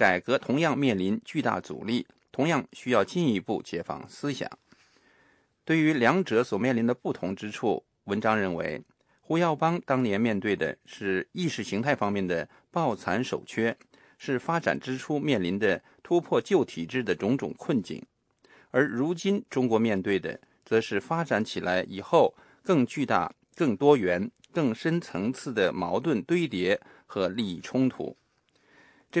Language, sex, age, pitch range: English, male, 50-69, 100-160 Hz